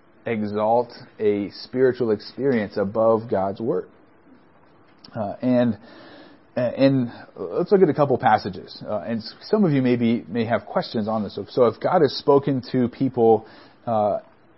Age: 30-49